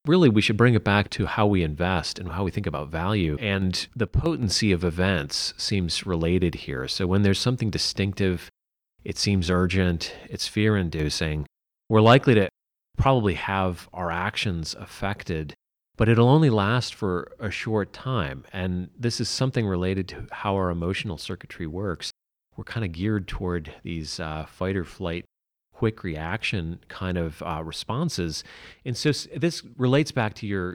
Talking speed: 160 wpm